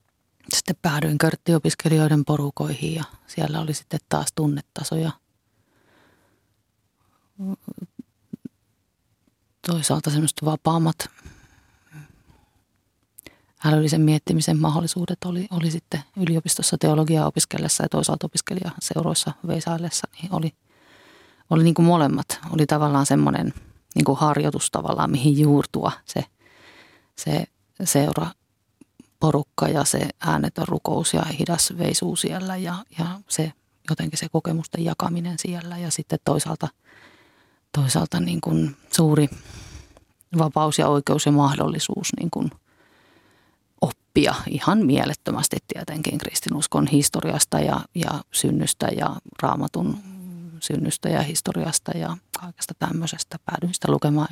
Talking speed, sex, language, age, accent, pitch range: 100 wpm, female, Finnish, 30-49, native, 145-170 Hz